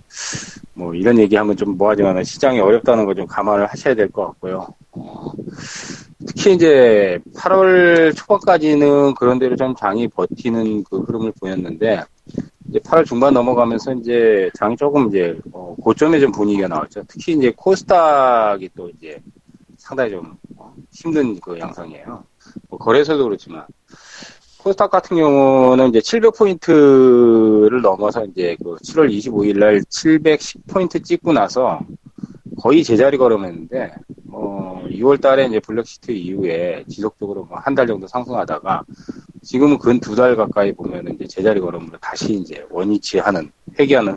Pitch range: 105-155 Hz